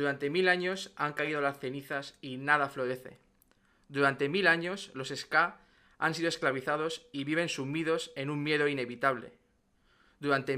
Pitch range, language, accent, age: 135-160 Hz, Spanish, Spanish, 20-39